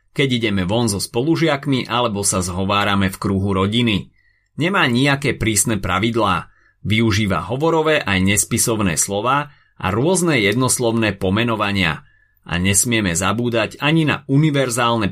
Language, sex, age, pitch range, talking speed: Slovak, male, 30-49, 100-130 Hz, 120 wpm